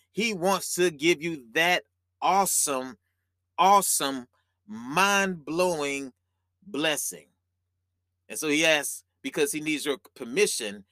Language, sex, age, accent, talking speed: English, male, 30-49, American, 105 wpm